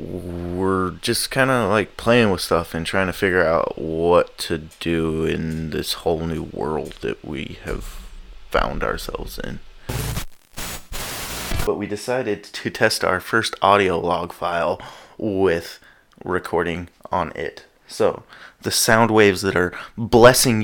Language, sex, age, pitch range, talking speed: English, male, 20-39, 95-120 Hz, 140 wpm